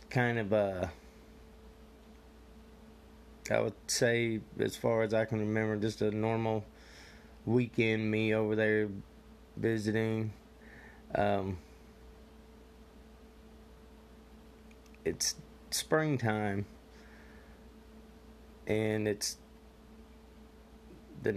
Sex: male